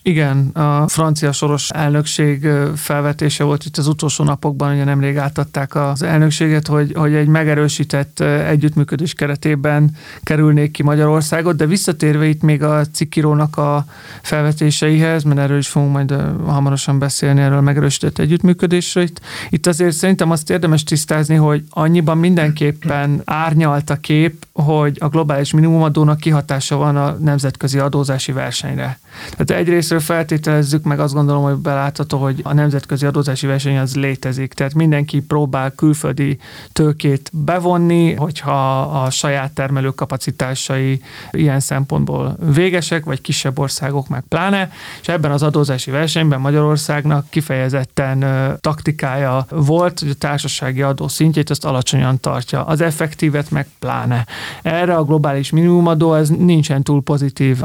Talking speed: 135 wpm